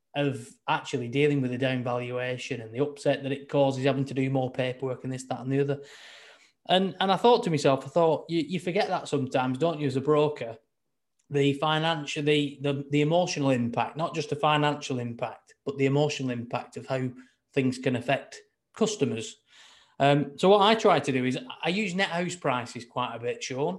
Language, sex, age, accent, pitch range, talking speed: English, male, 20-39, British, 130-155 Hz, 205 wpm